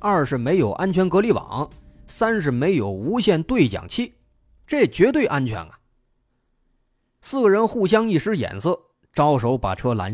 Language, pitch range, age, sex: Chinese, 120-190 Hz, 30-49, male